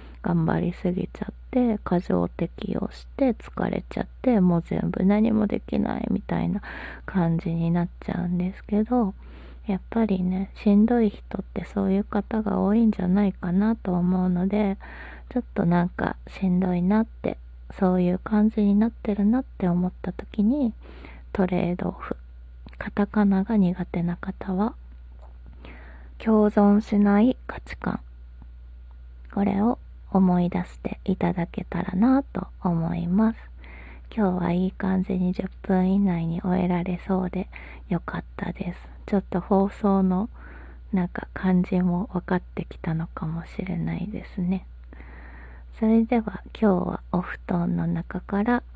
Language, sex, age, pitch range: Japanese, female, 20-39, 175-205 Hz